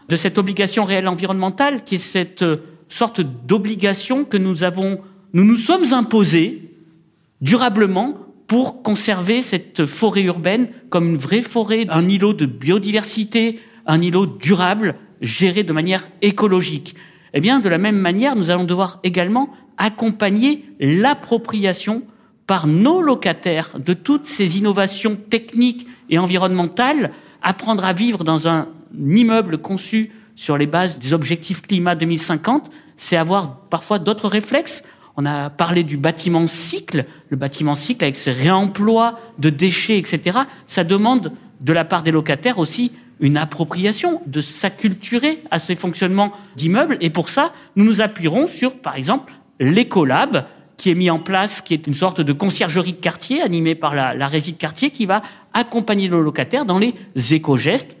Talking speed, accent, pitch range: 155 wpm, French, 165-220 Hz